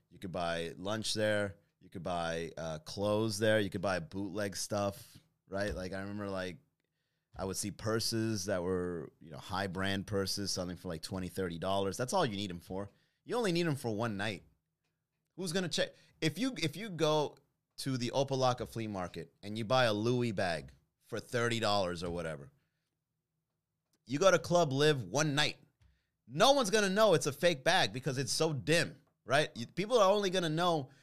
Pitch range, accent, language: 105-155 Hz, American, English